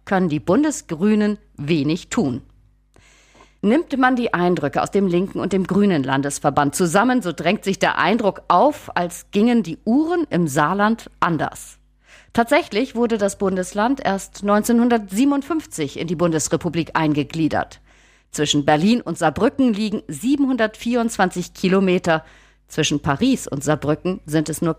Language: German